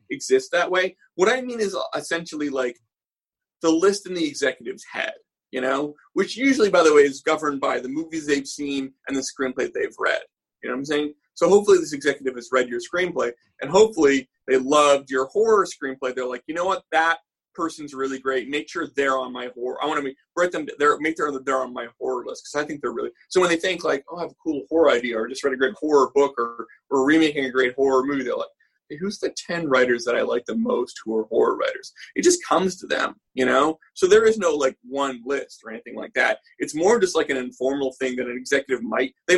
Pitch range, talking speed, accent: 130-185 Hz, 240 wpm, American